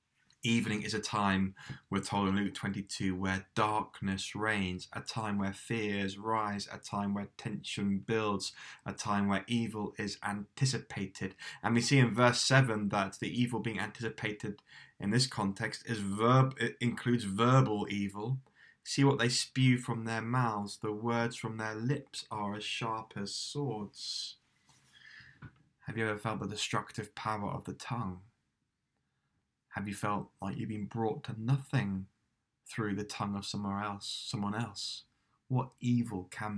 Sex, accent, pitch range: male, British, 100-125 Hz